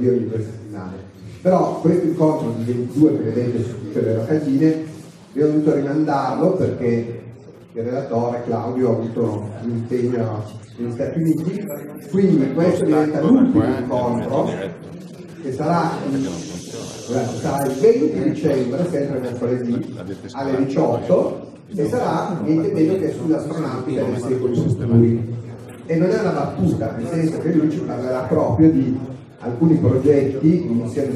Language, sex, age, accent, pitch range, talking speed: Italian, male, 40-59, native, 115-155 Hz, 130 wpm